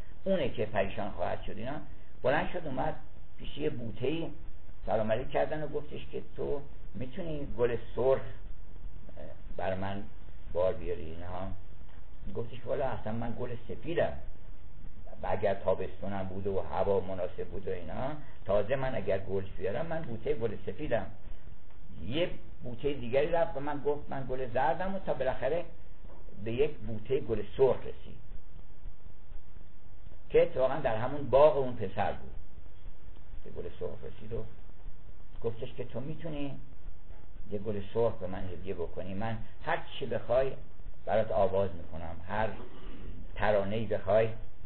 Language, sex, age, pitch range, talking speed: Persian, male, 60-79, 90-125 Hz, 140 wpm